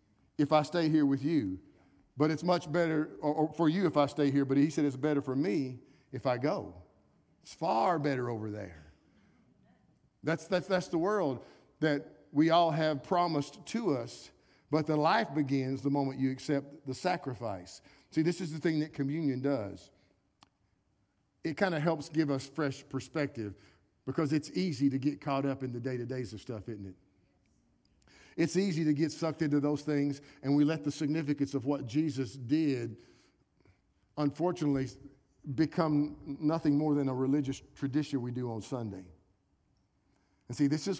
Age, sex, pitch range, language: 50-69, male, 125-150 Hz, English